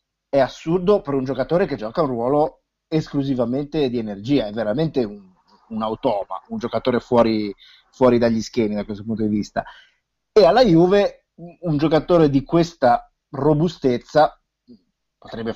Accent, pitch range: native, 110-145 Hz